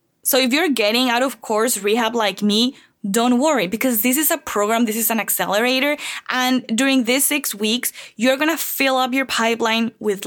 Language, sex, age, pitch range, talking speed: English, female, 20-39, 215-260 Hz, 195 wpm